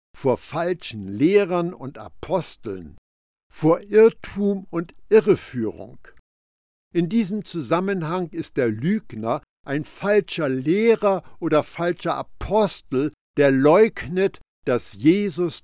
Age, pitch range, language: 60-79, 125-180 Hz, German